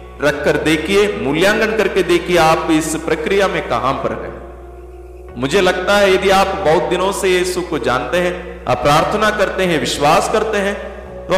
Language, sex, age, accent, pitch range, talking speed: Hindi, male, 50-69, native, 145-205 Hz, 165 wpm